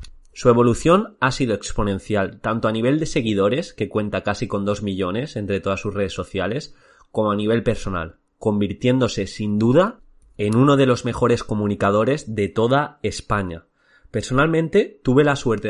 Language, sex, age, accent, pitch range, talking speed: Spanish, male, 30-49, Spanish, 100-130 Hz, 155 wpm